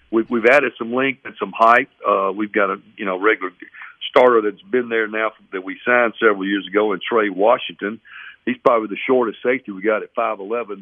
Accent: American